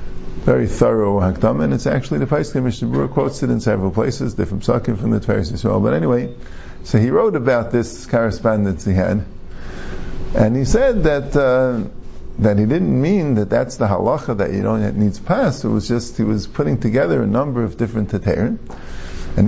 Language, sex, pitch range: English, male, 100-125 Hz